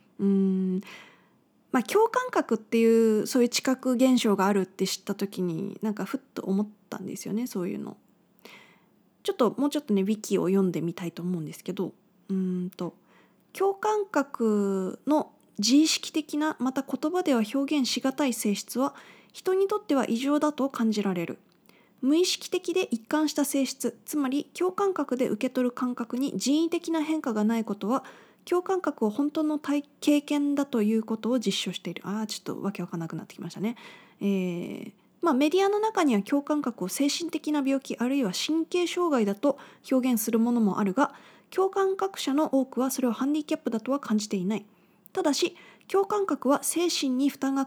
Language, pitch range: Japanese, 205-300 Hz